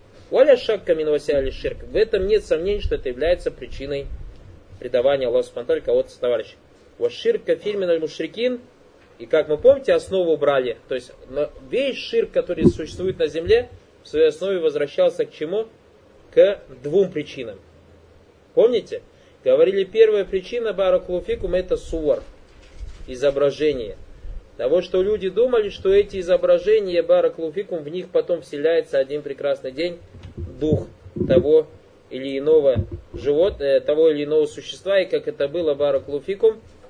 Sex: male